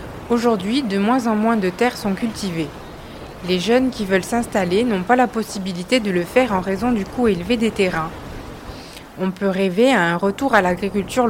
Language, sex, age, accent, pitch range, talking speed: French, female, 30-49, French, 190-235 Hz, 190 wpm